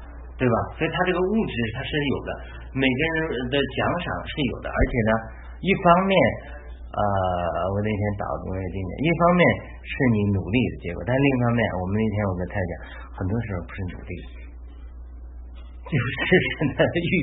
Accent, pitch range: native, 90-120 Hz